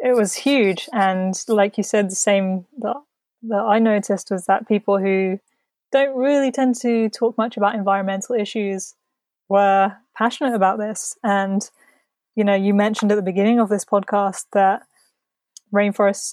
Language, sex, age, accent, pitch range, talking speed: English, female, 20-39, British, 195-220 Hz, 160 wpm